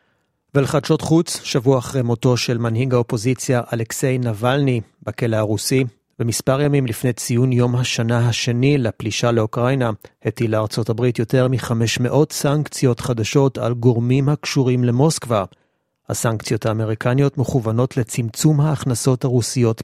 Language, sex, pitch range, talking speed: Hebrew, male, 115-140 Hz, 115 wpm